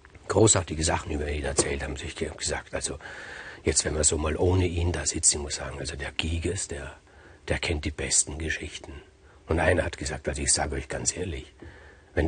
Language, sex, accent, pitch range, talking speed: German, male, German, 80-105 Hz, 200 wpm